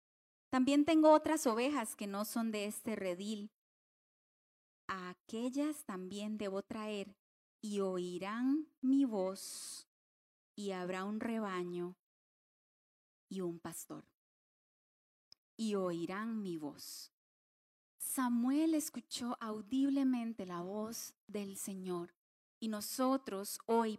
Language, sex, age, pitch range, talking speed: Spanish, female, 30-49, 205-260 Hz, 100 wpm